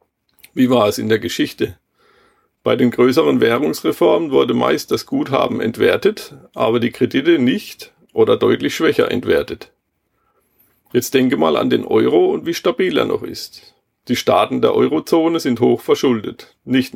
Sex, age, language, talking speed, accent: male, 40-59, German, 150 wpm, German